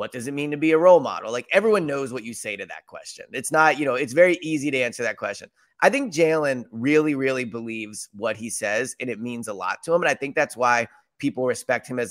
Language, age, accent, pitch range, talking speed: English, 30-49, American, 115-155 Hz, 270 wpm